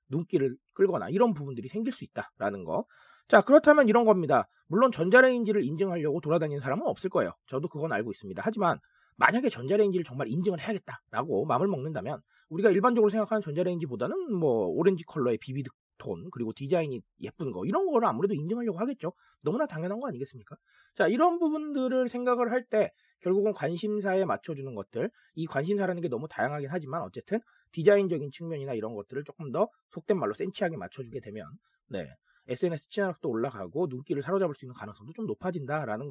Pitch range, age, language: 155-225 Hz, 30-49, Korean